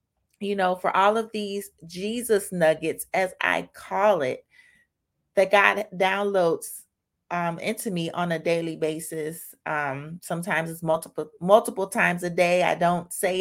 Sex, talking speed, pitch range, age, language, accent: female, 150 wpm, 165-210 Hz, 30-49, English, American